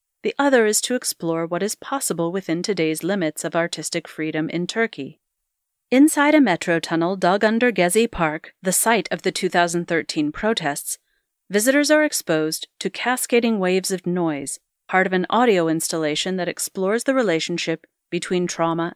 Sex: female